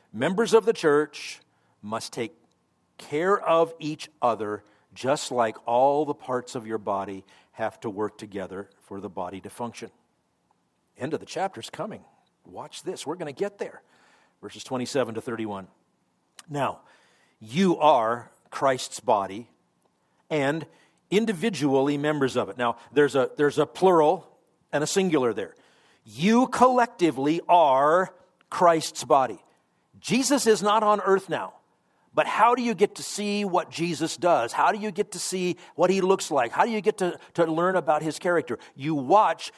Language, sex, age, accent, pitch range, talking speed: English, male, 50-69, American, 130-185 Hz, 160 wpm